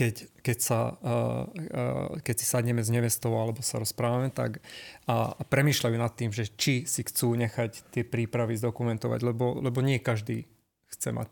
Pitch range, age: 115-130 Hz, 30-49